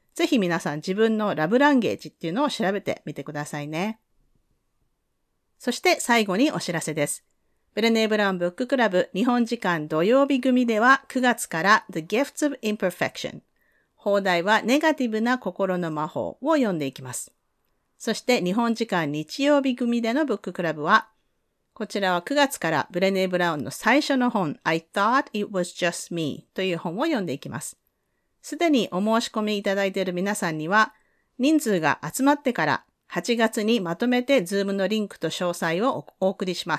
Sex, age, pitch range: female, 40-59, 175-245 Hz